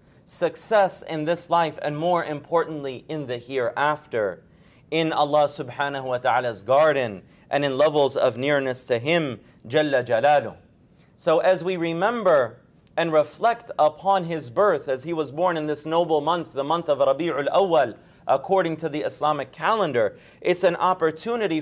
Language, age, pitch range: English, 40-59, 145-185 Hz